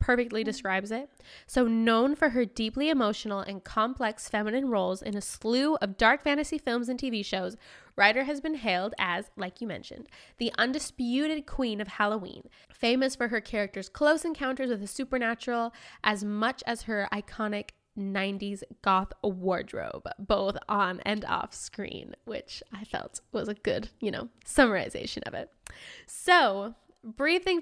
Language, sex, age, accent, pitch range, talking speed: English, female, 10-29, American, 205-260 Hz, 155 wpm